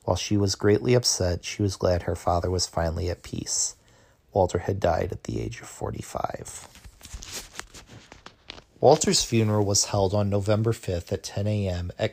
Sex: male